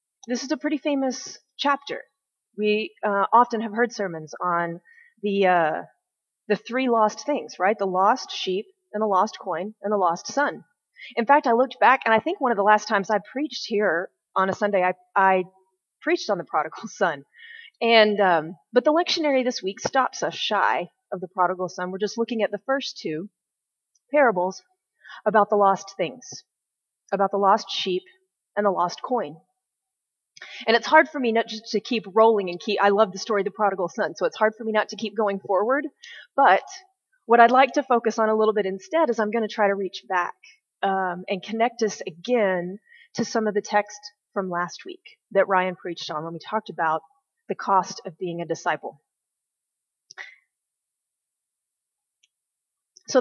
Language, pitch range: English, 190-250 Hz